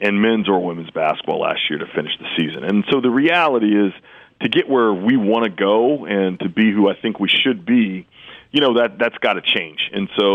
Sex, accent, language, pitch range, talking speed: male, American, English, 95-110 Hz, 230 wpm